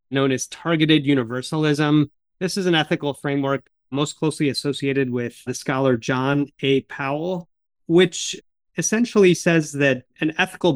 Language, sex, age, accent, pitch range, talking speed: English, male, 30-49, American, 135-170 Hz, 135 wpm